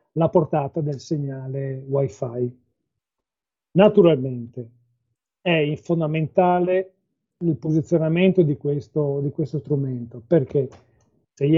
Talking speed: 100 wpm